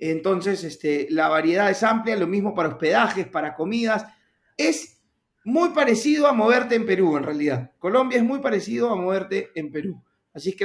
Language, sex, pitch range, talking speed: Spanish, male, 170-225 Hz, 180 wpm